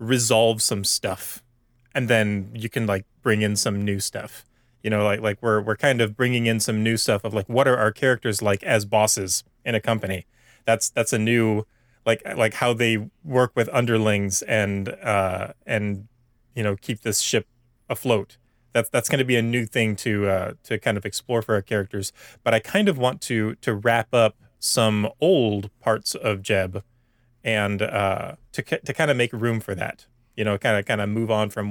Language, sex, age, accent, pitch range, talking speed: English, male, 30-49, American, 105-120 Hz, 205 wpm